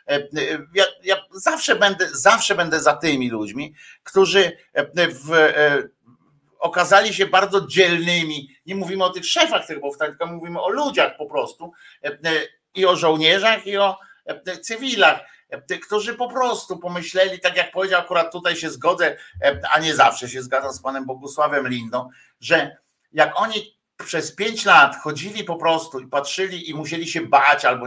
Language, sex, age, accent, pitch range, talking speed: Polish, male, 50-69, native, 150-200 Hz, 155 wpm